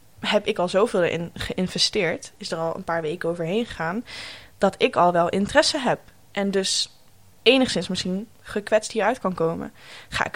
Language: English